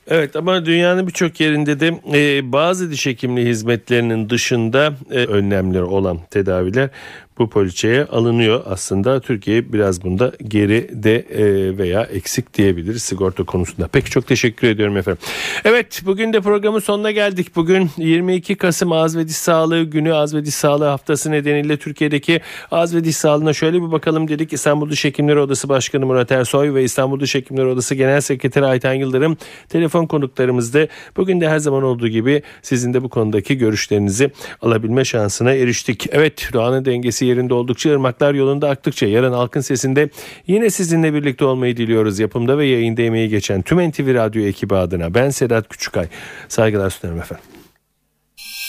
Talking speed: 155 wpm